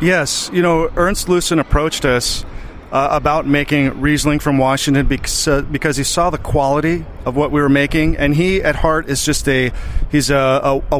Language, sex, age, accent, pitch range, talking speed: English, male, 40-59, American, 130-155 Hz, 190 wpm